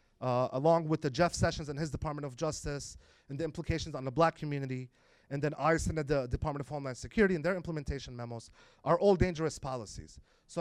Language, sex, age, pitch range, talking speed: English, male, 30-49, 125-165 Hz, 210 wpm